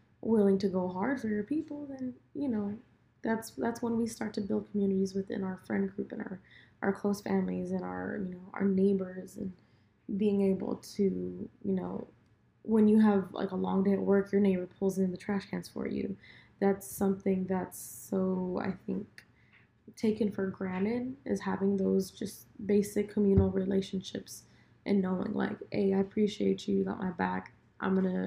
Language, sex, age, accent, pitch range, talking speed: English, female, 20-39, American, 185-205 Hz, 185 wpm